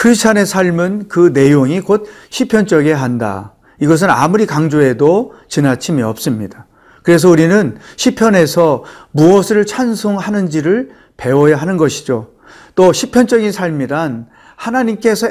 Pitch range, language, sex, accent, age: 150-210 Hz, Korean, male, native, 40-59